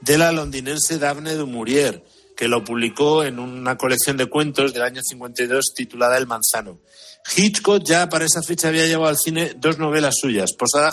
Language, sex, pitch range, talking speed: Spanish, male, 120-155 Hz, 180 wpm